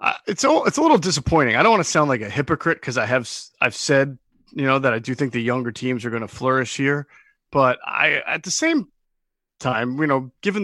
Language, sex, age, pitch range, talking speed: English, male, 30-49, 125-160 Hz, 245 wpm